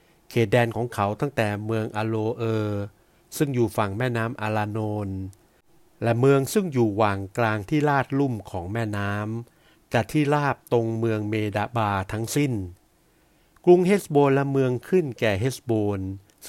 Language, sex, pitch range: Thai, male, 105-130 Hz